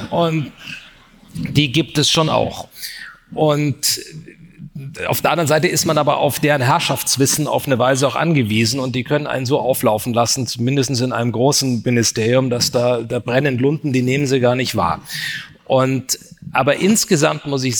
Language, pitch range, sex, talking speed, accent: German, 115-140 Hz, male, 170 wpm, German